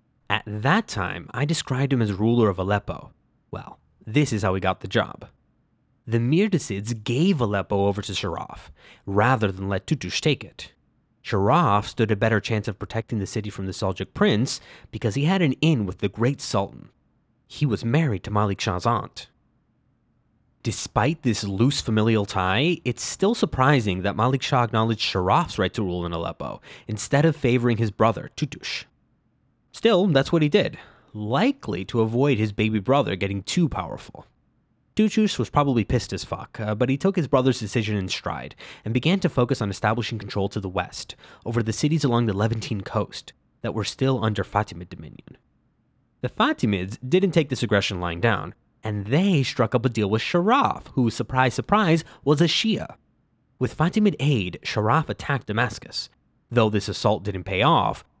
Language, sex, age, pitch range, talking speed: English, male, 20-39, 105-135 Hz, 175 wpm